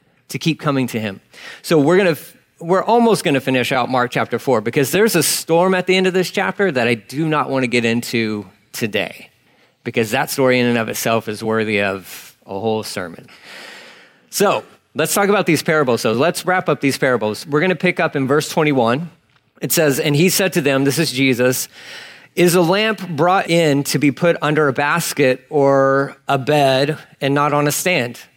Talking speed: 210 wpm